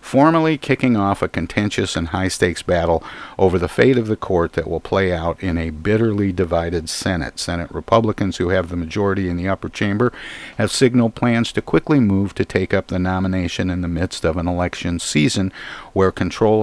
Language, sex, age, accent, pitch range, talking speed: English, male, 50-69, American, 90-105 Hz, 190 wpm